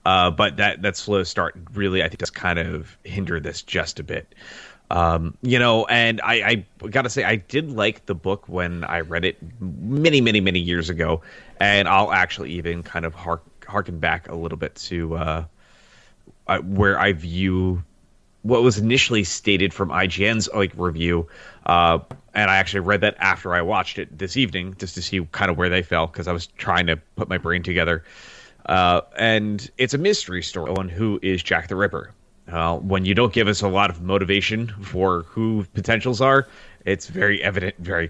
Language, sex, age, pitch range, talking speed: English, male, 30-49, 85-105 Hz, 195 wpm